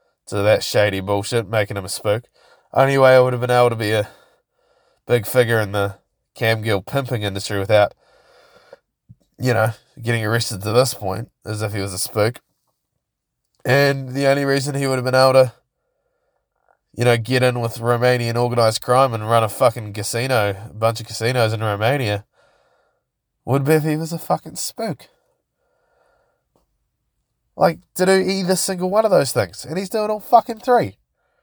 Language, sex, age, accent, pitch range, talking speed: English, male, 20-39, Australian, 115-155 Hz, 175 wpm